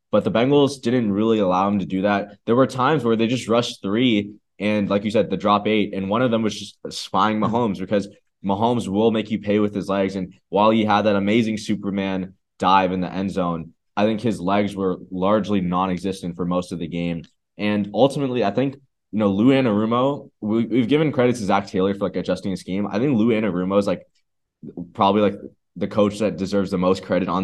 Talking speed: 225 wpm